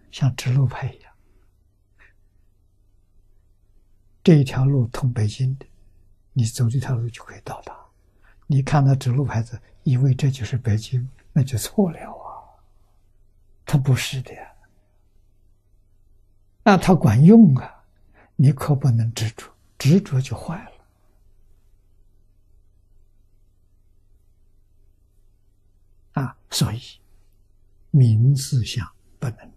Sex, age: male, 60-79